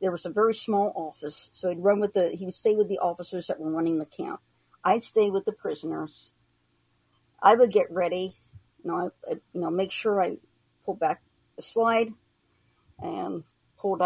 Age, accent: 50-69, American